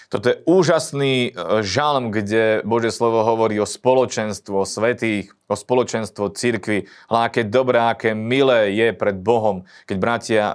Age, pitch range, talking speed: 30-49, 100-115 Hz, 140 wpm